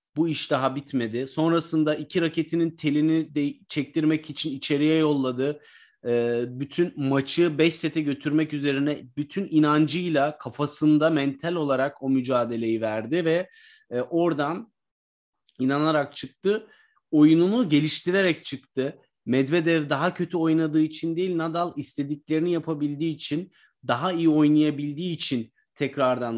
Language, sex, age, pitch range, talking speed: Turkish, male, 30-49, 140-170 Hz, 115 wpm